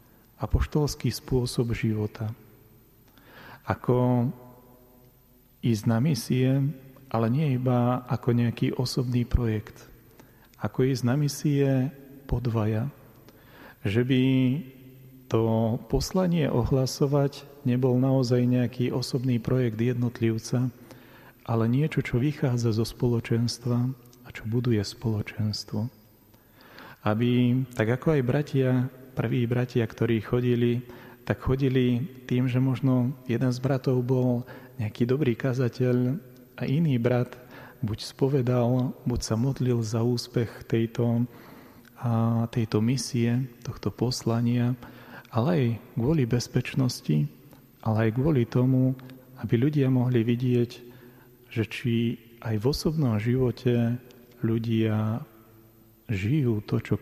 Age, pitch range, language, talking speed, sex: 40-59, 115-130 Hz, Slovak, 105 wpm, male